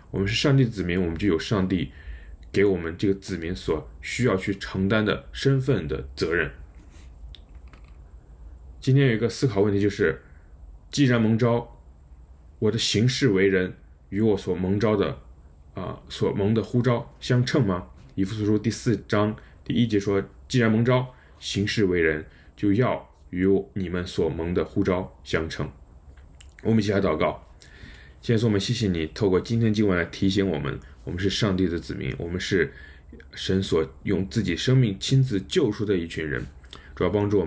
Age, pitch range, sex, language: 20-39, 75-105 Hz, male, Chinese